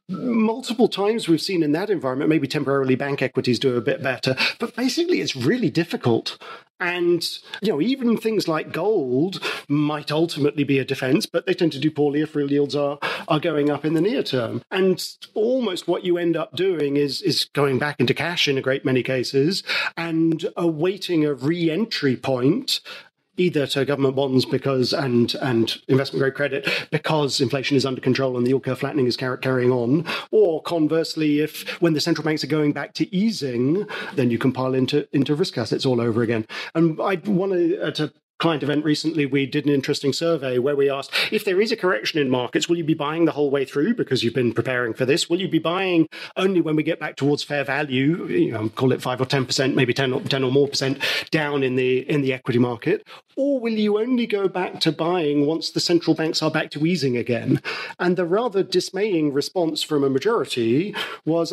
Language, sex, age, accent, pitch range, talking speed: English, male, 40-59, British, 135-175 Hz, 205 wpm